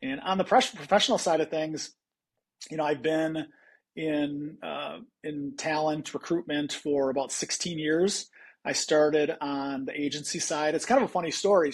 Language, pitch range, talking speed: English, 135-160 Hz, 170 wpm